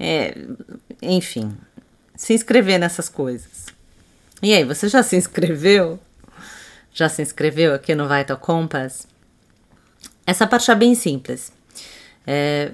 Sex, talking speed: female, 115 wpm